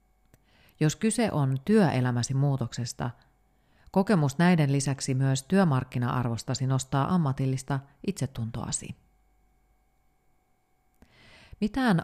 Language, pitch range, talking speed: Finnish, 120-150 Hz, 70 wpm